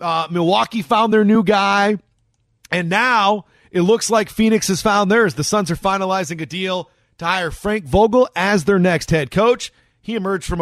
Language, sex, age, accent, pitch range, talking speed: English, male, 30-49, American, 165-200 Hz, 185 wpm